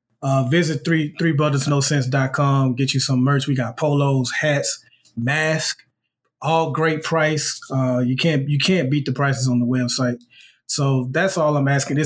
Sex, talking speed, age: male, 175 wpm, 30-49